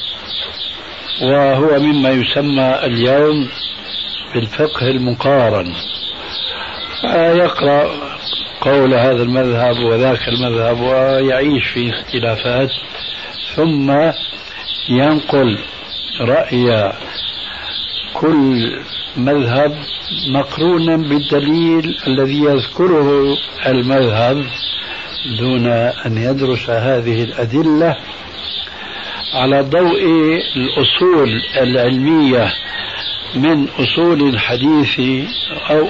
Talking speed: 65 wpm